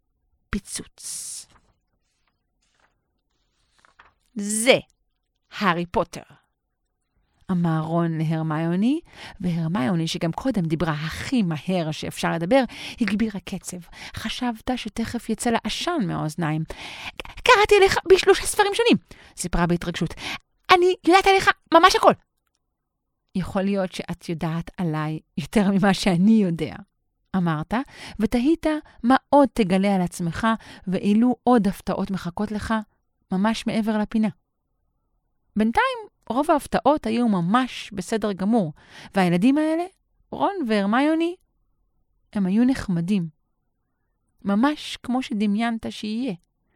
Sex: female